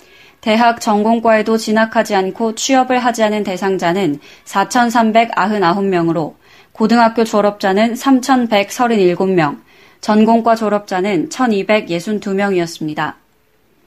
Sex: female